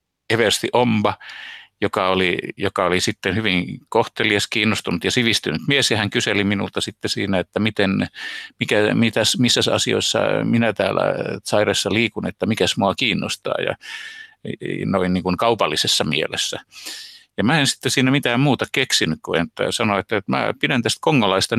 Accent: native